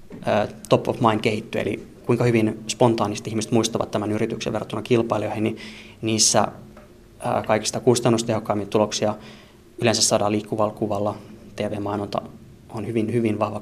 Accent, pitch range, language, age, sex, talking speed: native, 105-115 Hz, Finnish, 20-39, male, 125 wpm